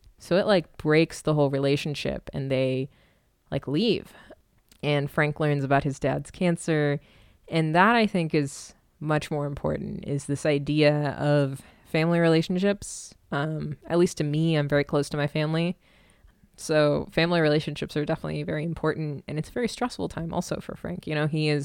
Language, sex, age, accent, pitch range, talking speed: English, female, 20-39, American, 145-165 Hz, 175 wpm